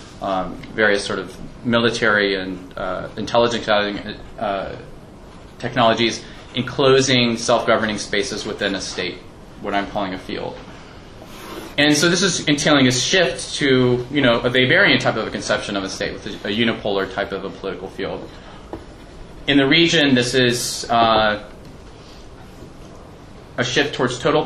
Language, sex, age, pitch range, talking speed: English, male, 20-39, 110-140 Hz, 145 wpm